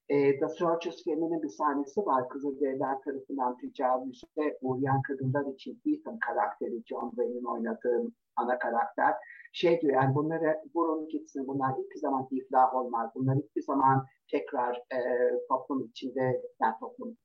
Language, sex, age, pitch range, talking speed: Turkish, male, 50-69, 135-170 Hz, 135 wpm